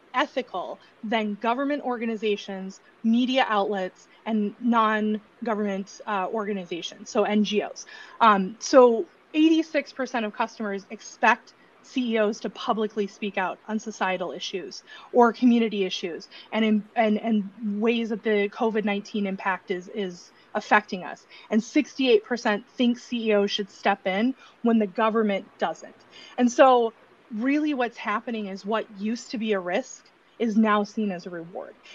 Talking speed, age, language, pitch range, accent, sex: 130 wpm, 20-39, English, 205-245 Hz, American, female